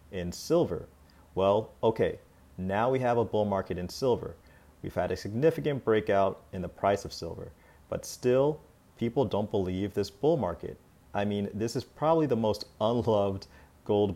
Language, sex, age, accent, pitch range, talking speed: English, male, 30-49, American, 90-110 Hz, 165 wpm